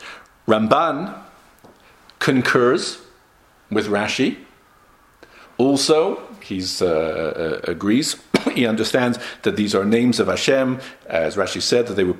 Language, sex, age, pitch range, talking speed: English, male, 50-69, 115-185 Hz, 110 wpm